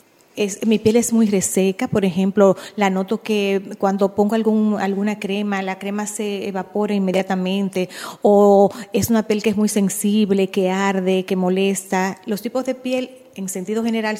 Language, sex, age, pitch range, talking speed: Spanish, female, 30-49, 195-225 Hz, 160 wpm